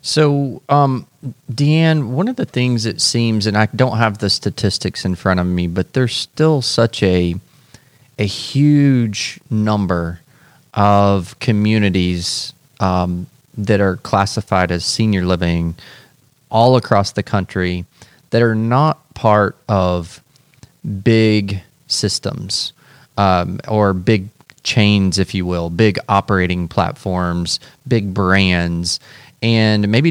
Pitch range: 95-120 Hz